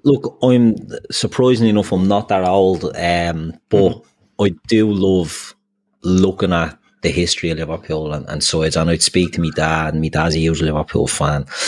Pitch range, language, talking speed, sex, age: 85-100 Hz, English, 185 wpm, male, 30-49